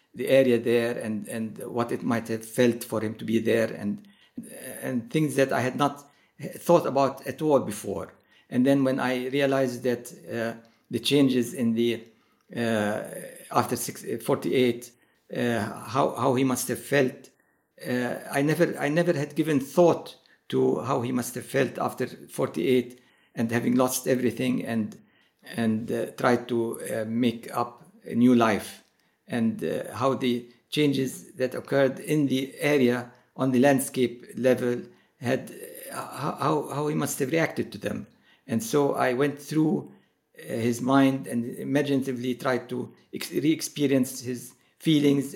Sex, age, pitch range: male, 60-79, 120-140 Hz